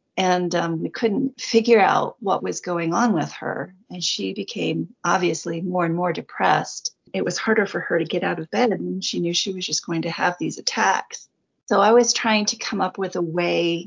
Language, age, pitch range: English, 40-59, 170-220 Hz